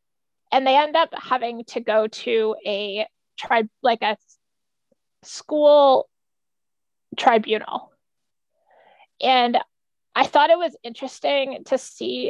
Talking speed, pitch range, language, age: 110 wpm, 230-275 Hz, English, 20-39